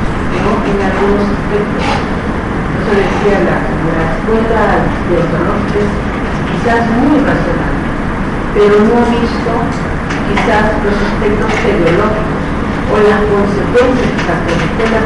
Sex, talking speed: female, 100 wpm